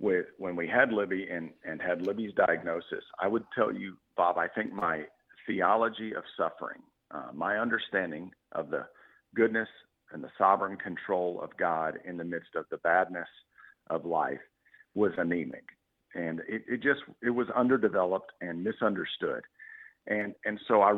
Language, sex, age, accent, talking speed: English, male, 50-69, American, 155 wpm